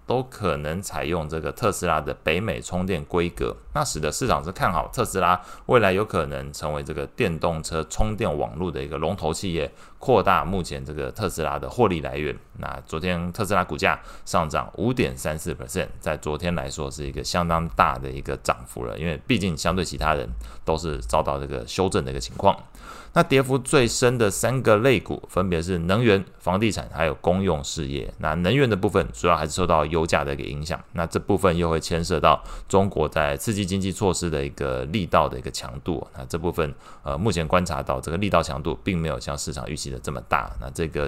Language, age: Chinese, 20-39